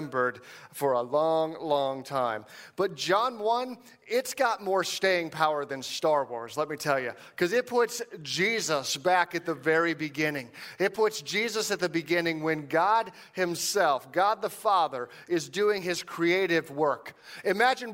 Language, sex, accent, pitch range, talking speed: English, male, American, 150-195 Hz, 155 wpm